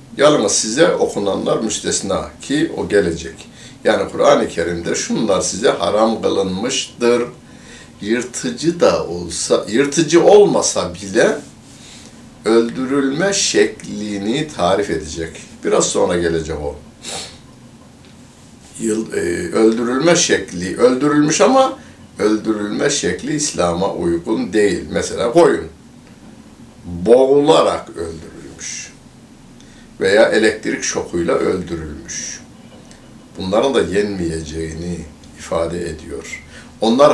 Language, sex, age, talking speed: Turkish, male, 60-79, 85 wpm